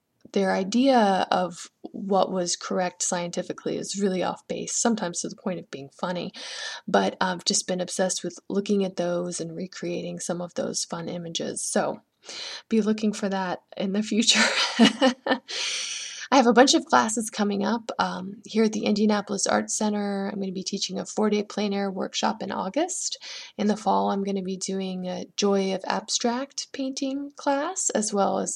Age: 20-39